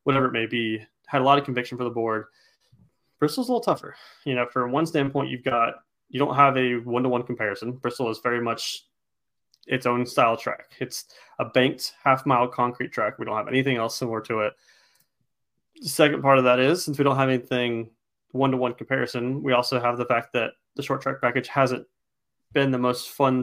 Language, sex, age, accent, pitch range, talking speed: English, male, 20-39, American, 120-140 Hz, 215 wpm